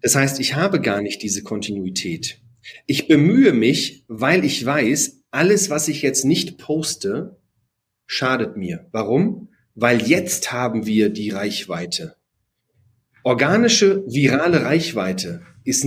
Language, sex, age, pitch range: German, male, 40-59, 125-165 Hz